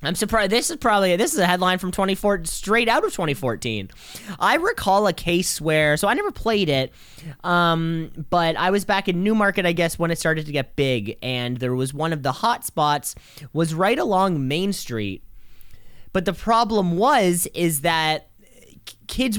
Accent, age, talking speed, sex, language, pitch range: American, 20-39, 190 wpm, male, English, 155-205 Hz